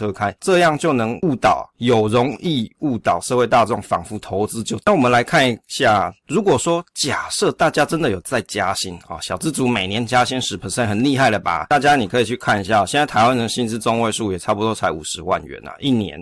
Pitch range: 105-135 Hz